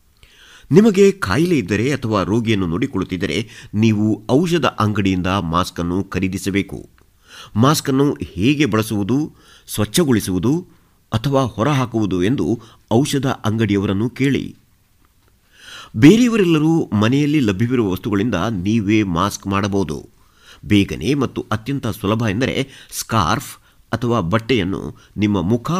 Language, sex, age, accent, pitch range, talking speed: Kannada, male, 50-69, native, 95-130 Hz, 90 wpm